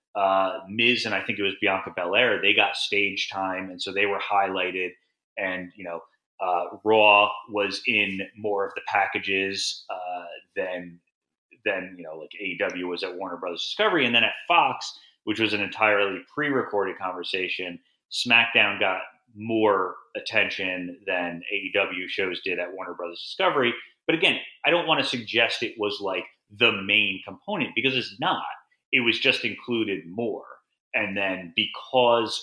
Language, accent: English, American